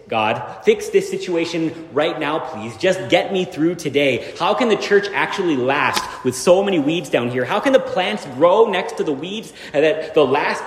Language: English